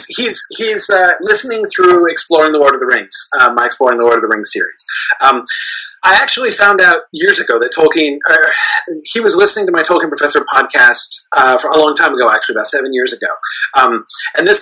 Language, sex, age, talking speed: English, male, 40-59, 220 wpm